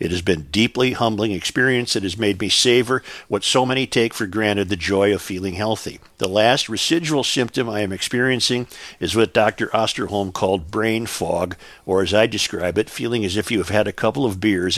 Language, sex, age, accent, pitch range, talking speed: English, male, 50-69, American, 100-120 Hz, 210 wpm